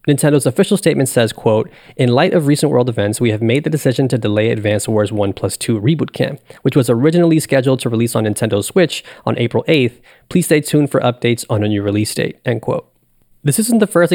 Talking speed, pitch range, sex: 225 wpm, 110-145 Hz, male